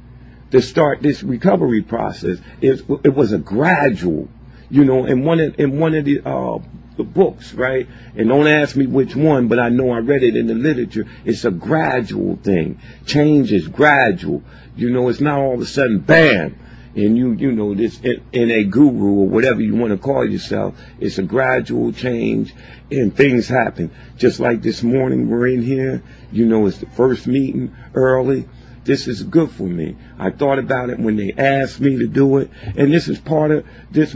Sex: male